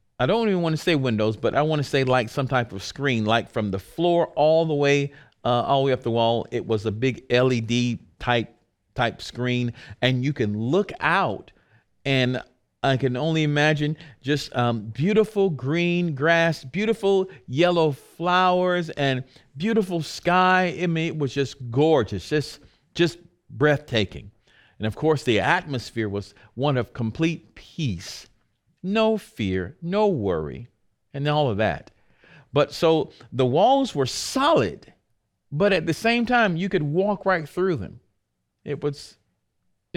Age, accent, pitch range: 50-69, American, 125-170 Hz